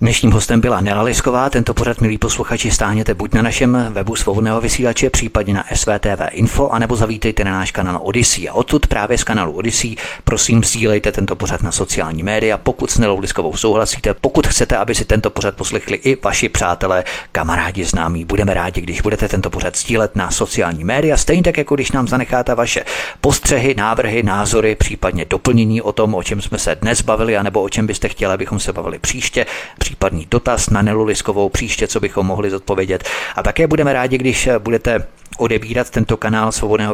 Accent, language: native, Czech